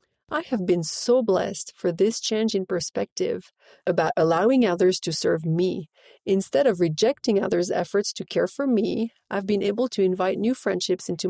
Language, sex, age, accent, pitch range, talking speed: English, female, 40-59, Canadian, 180-235 Hz, 175 wpm